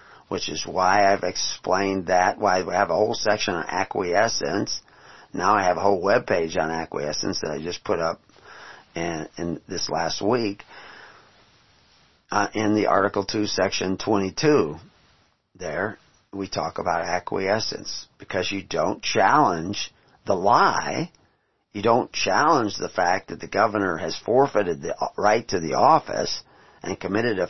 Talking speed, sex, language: 150 wpm, male, English